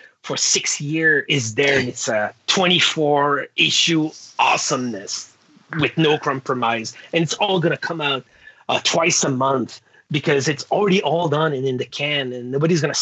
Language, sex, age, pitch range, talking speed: English, male, 30-49, 125-160 Hz, 165 wpm